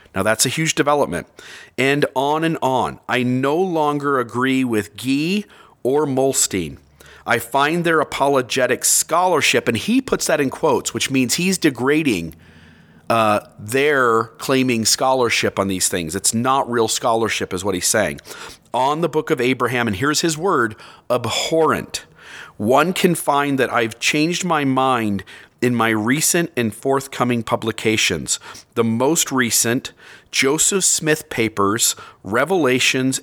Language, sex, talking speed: English, male, 140 wpm